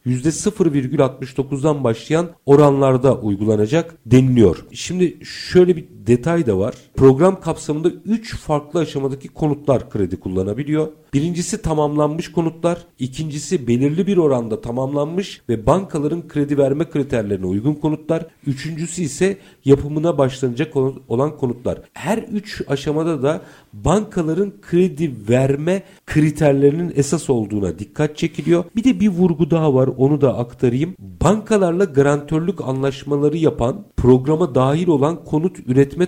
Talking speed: 115 wpm